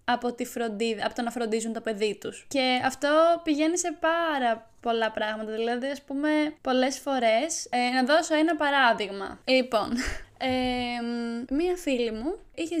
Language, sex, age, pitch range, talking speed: Greek, female, 10-29, 235-300 Hz, 155 wpm